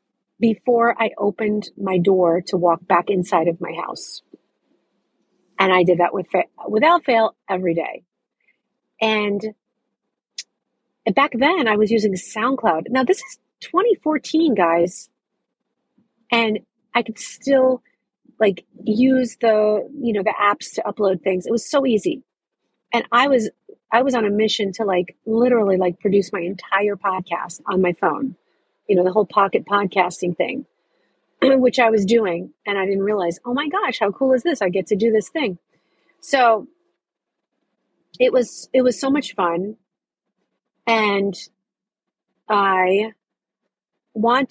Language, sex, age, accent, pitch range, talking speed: English, female, 40-59, American, 190-245 Hz, 145 wpm